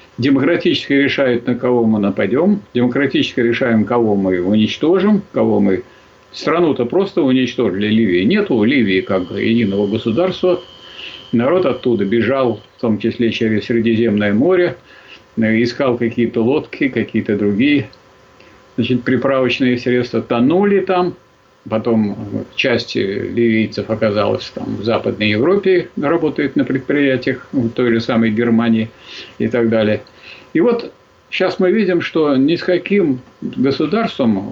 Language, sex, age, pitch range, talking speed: Russian, male, 50-69, 110-140 Hz, 120 wpm